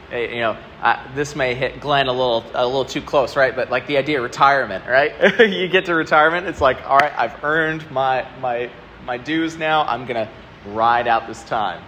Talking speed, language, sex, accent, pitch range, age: 230 wpm, English, male, American, 110-140 Hz, 30-49